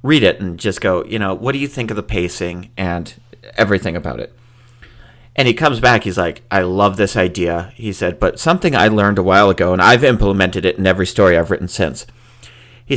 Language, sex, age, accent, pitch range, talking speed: English, male, 40-59, American, 100-120 Hz, 220 wpm